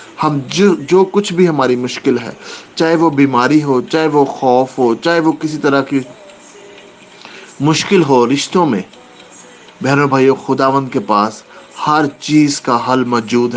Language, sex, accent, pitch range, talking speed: English, male, Indian, 125-160 Hz, 150 wpm